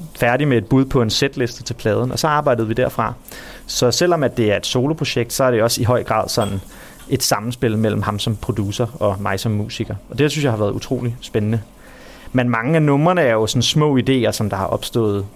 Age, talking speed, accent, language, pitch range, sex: 30-49, 240 wpm, native, Danish, 110-130 Hz, male